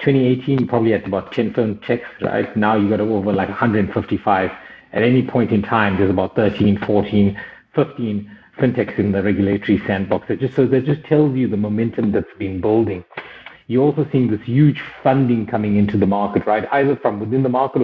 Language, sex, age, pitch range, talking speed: English, male, 50-69, 100-125 Hz, 190 wpm